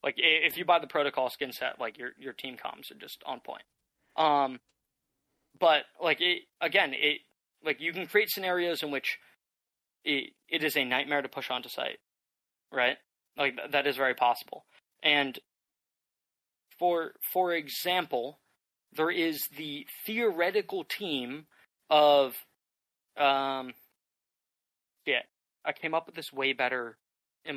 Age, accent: 20-39, American